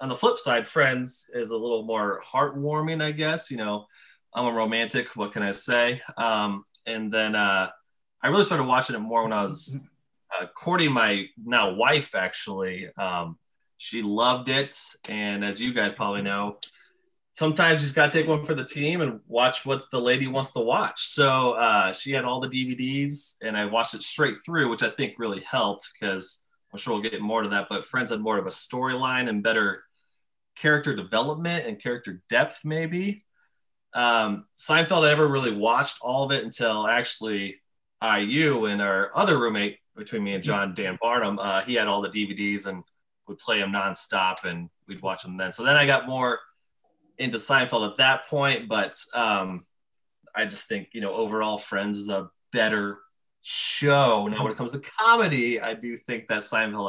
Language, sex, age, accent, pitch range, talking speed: English, male, 20-39, American, 105-140 Hz, 195 wpm